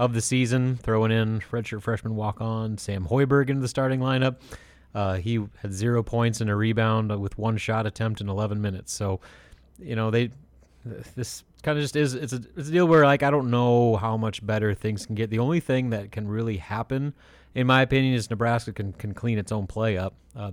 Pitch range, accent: 100-120 Hz, American